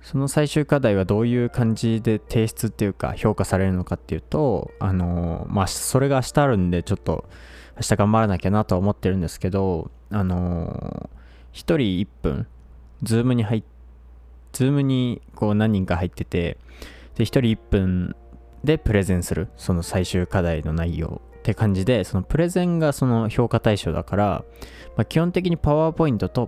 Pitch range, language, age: 85-115 Hz, Japanese, 20-39